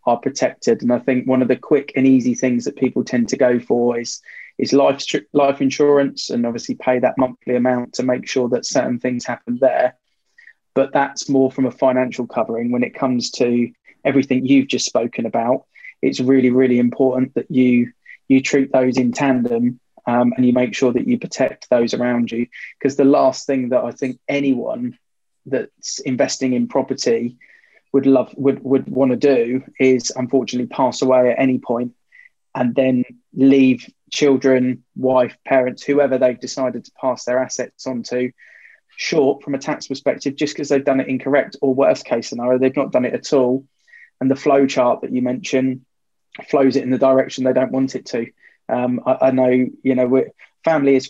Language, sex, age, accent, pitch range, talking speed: English, male, 20-39, British, 125-135 Hz, 190 wpm